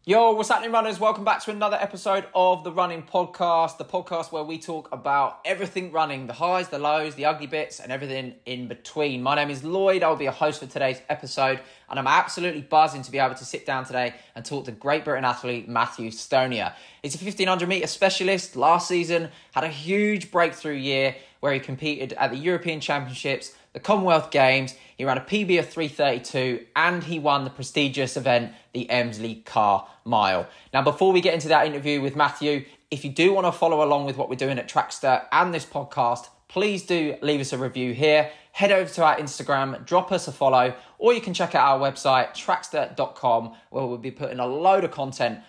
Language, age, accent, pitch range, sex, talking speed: English, 20-39, British, 130-170 Hz, male, 205 wpm